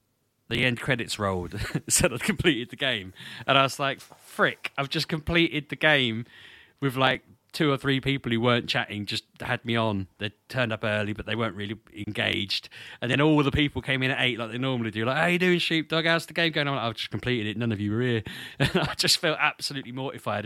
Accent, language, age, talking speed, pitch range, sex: British, English, 30-49, 225 wpm, 95-125 Hz, male